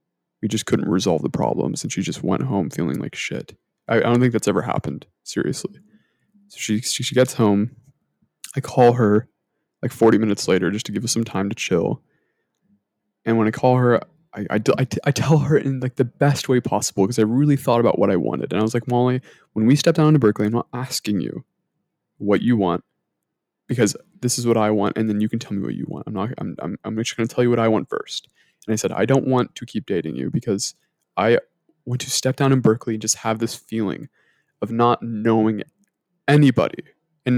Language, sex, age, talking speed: English, male, 20-39, 230 wpm